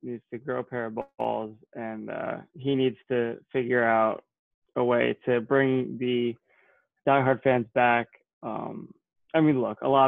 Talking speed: 165 wpm